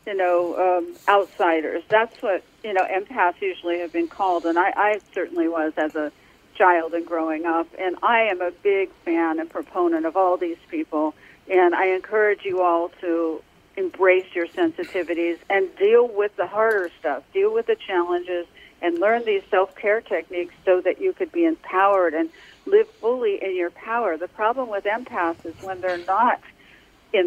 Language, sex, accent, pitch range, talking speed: English, female, American, 170-230 Hz, 180 wpm